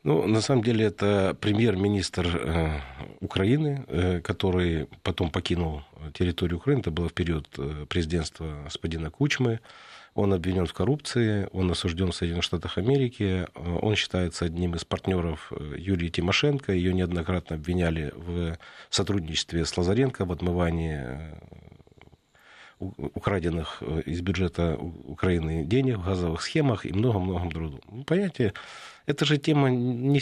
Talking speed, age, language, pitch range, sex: 125 wpm, 40-59, Russian, 85-105 Hz, male